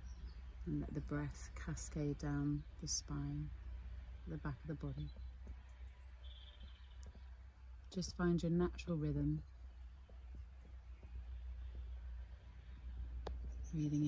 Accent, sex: British, female